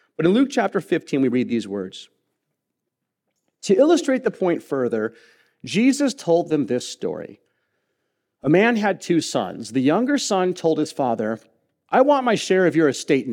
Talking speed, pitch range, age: 165 wpm, 120-185 Hz, 40-59